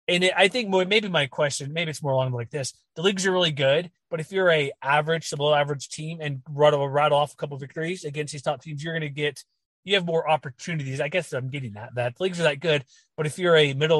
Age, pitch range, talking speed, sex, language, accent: 30-49, 145-175 Hz, 275 wpm, male, English, American